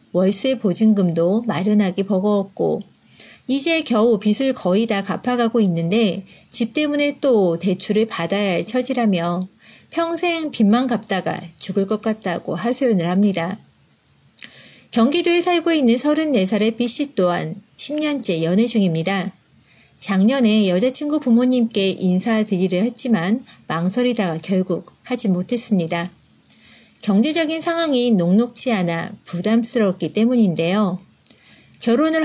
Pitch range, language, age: 185-240 Hz, Korean, 40-59